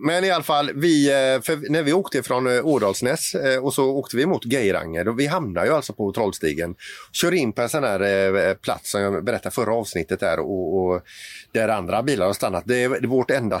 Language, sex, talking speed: Swedish, male, 205 wpm